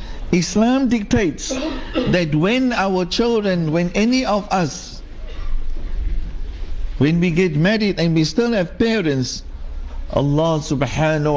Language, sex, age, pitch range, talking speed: English, male, 60-79, 120-185 Hz, 110 wpm